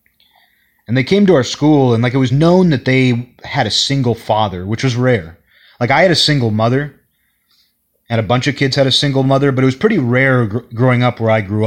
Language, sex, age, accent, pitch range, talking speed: English, male, 30-49, American, 110-135 Hz, 230 wpm